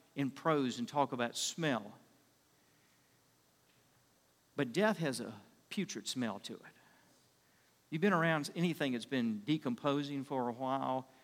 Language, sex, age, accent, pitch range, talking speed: English, male, 50-69, American, 130-165 Hz, 130 wpm